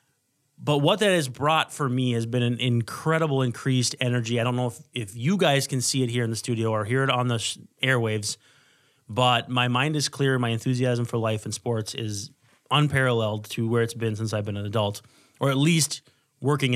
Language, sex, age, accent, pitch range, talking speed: English, male, 30-49, American, 120-145 Hz, 210 wpm